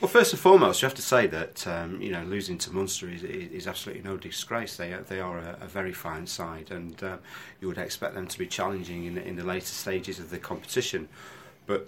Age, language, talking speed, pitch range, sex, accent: 30-49, English, 235 wpm, 90-110 Hz, male, British